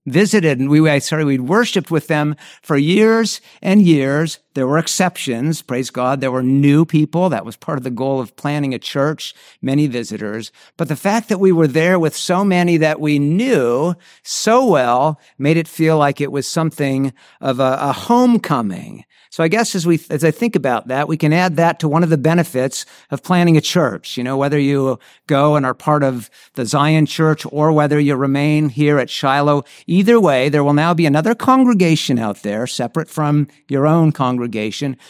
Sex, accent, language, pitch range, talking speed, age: male, American, English, 130-160 Hz, 200 wpm, 50-69